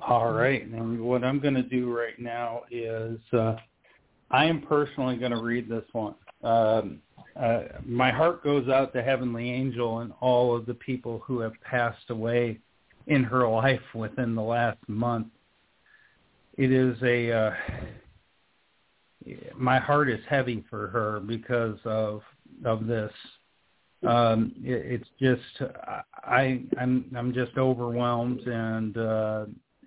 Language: English